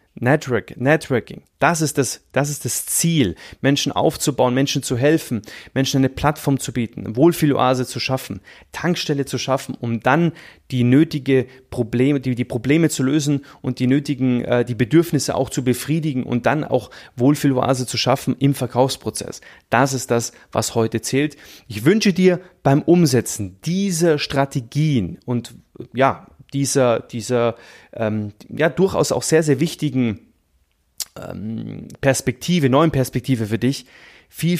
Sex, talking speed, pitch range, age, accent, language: male, 145 wpm, 125-155 Hz, 30-49, German, German